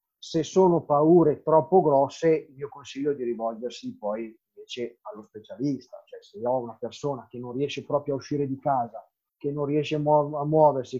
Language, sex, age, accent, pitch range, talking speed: Italian, male, 30-49, native, 135-180 Hz, 170 wpm